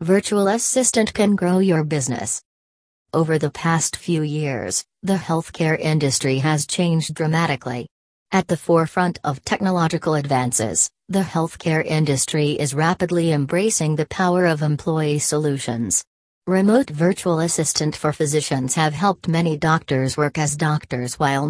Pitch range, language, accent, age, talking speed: 145-170 Hz, English, American, 40-59, 130 wpm